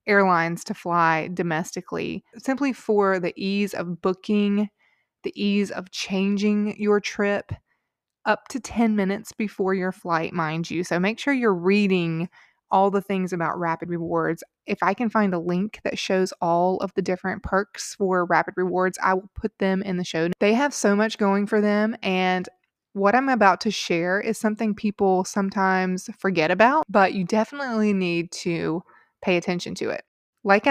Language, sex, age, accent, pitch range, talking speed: English, female, 20-39, American, 180-210 Hz, 170 wpm